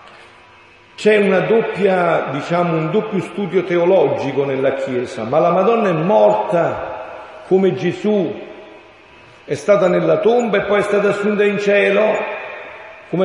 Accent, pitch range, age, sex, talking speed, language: native, 170-205 Hz, 50-69, male, 130 wpm, Italian